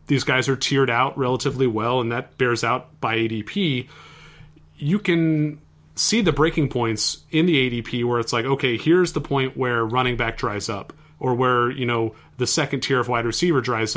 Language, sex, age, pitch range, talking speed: English, male, 30-49, 115-150 Hz, 195 wpm